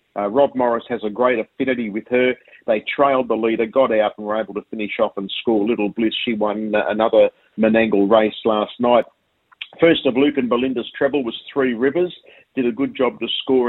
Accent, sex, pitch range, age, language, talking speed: Australian, male, 110-135 Hz, 50-69, English, 205 wpm